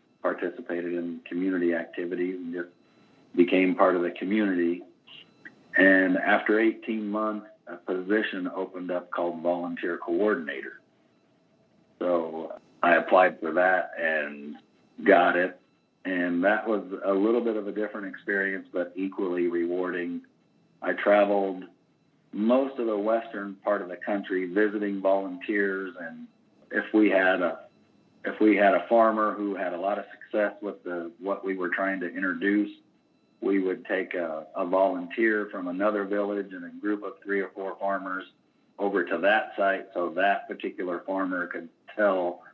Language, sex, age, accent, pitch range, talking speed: English, male, 50-69, American, 90-105 Hz, 150 wpm